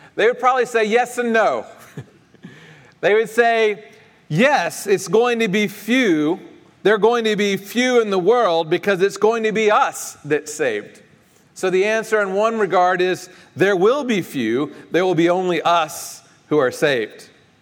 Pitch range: 175-245 Hz